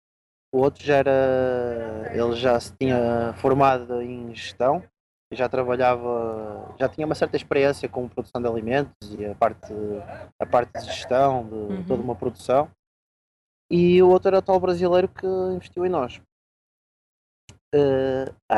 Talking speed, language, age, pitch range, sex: 150 wpm, Portuguese, 20-39, 115-165 Hz, male